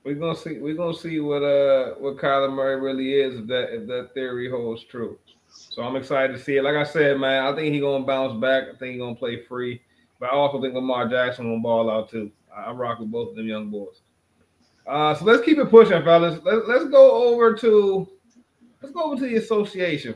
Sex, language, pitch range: male, English, 125-175 Hz